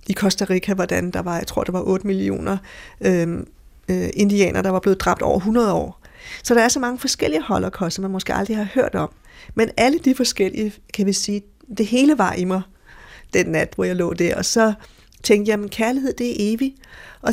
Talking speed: 220 wpm